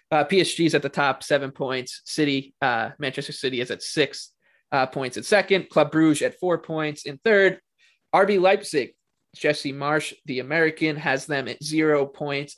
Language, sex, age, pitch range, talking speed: English, male, 20-39, 135-170 Hz, 170 wpm